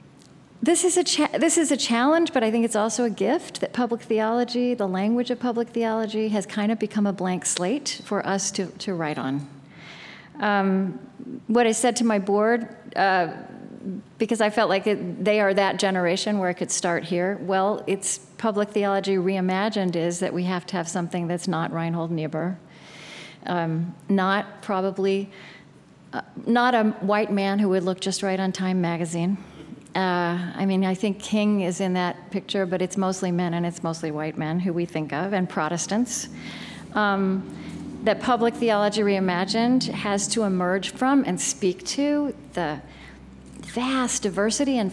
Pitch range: 180-225 Hz